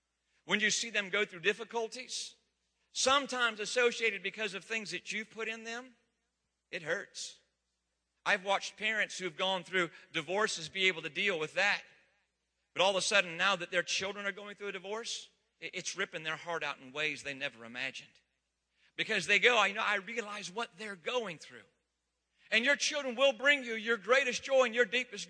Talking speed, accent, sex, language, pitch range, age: 185 wpm, American, male, English, 195-250 Hz, 40-59